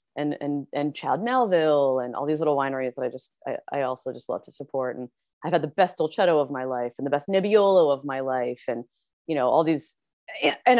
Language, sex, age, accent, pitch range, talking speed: English, female, 30-49, American, 140-175 Hz, 235 wpm